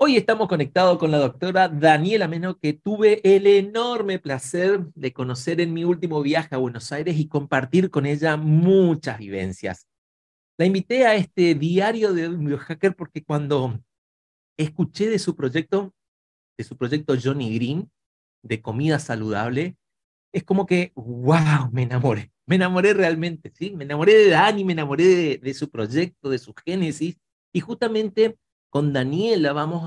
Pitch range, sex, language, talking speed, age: 135-185 Hz, male, Spanish, 155 wpm, 40-59